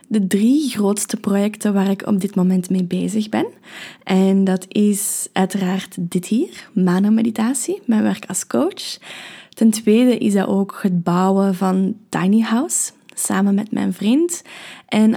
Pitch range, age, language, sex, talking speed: 200-240 Hz, 20-39, Dutch, female, 155 wpm